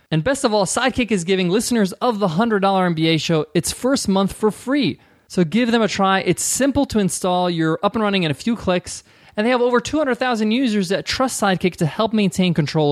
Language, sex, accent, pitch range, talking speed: English, male, American, 145-200 Hz, 225 wpm